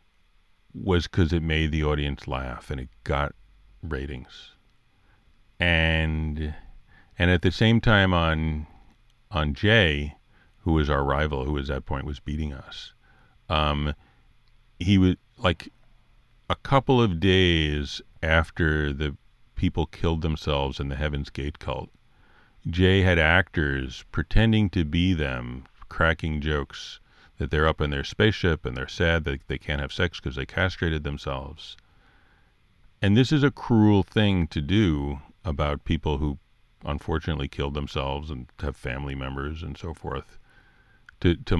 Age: 50-69